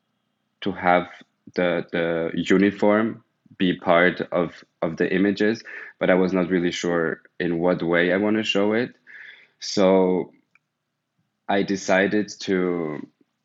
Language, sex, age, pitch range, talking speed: English, male, 20-39, 90-100 Hz, 130 wpm